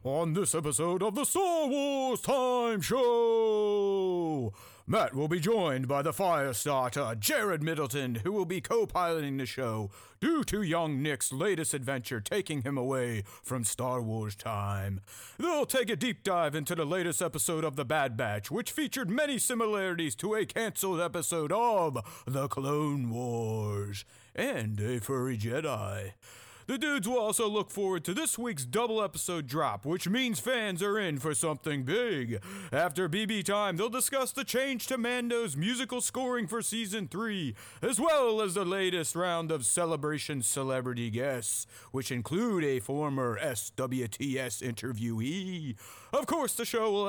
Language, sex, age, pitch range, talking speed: English, male, 30-49, 125-210 Hz, 155 wpm